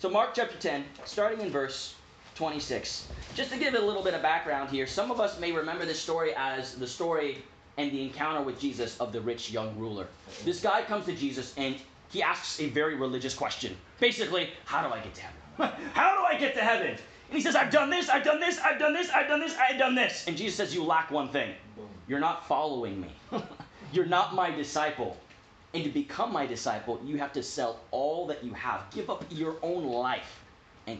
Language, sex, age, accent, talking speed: English, male, 30-49, American, 220 wpm